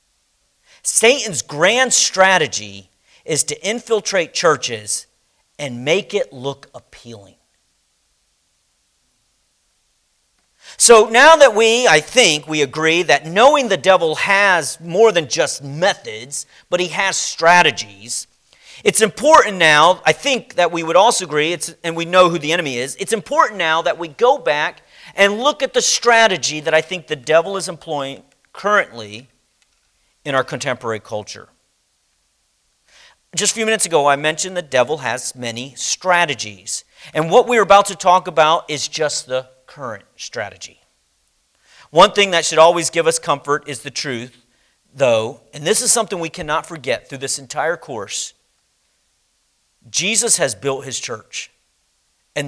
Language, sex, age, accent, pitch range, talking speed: English, male, 40-59, American, 130-195 Hz, 145 wpm